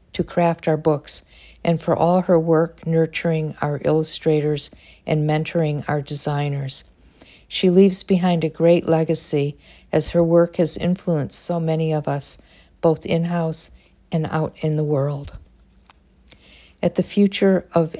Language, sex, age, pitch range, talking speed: English, female, 50-69, 145-170 Hz, 140 wpm